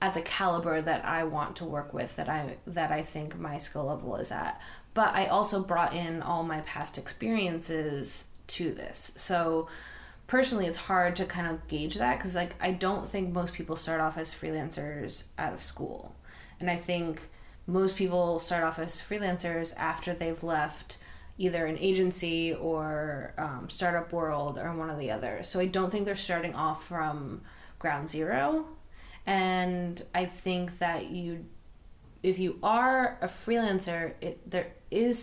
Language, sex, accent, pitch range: English, female, American, 160-190 Hz